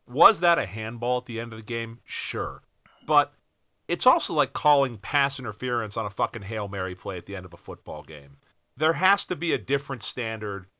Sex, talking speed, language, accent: male, 210 wpm, English, American